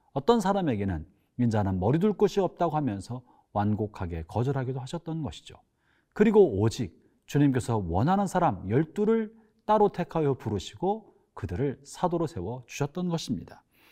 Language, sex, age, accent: Korean, male, 40-59, native